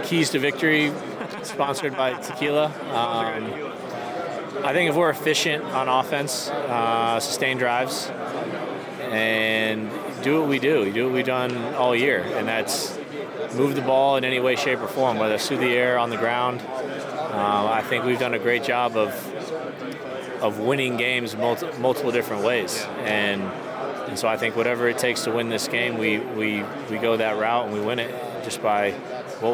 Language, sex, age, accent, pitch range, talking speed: English, male, 30-49, American, 110-130 Hz, 180 wpm